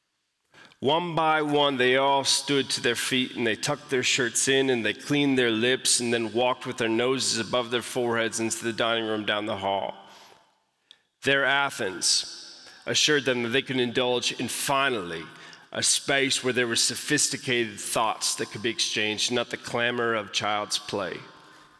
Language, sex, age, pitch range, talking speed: English, male, 30-49, 115-140 Hz, 175 wpm